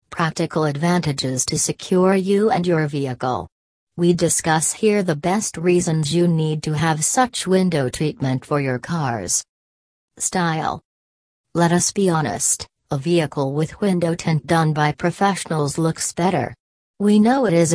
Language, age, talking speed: English, 40-59, 145 wpm